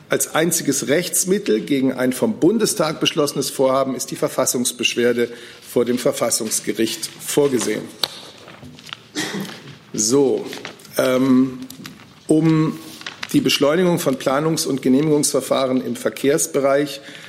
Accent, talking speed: German, 95 wpm